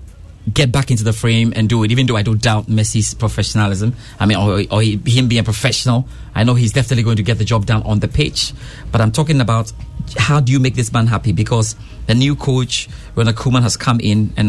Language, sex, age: English, male, 30-49